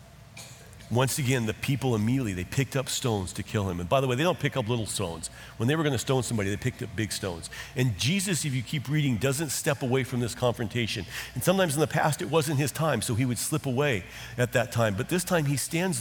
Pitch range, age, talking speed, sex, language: 115-145 Hz, 50-69, 255 wpm, male, English